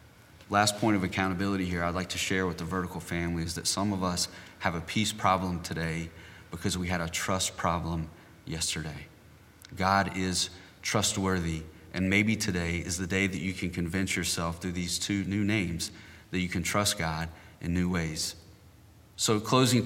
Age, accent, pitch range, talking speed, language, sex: 30-49, American, 85-105 Hz, 180 wpm, English, male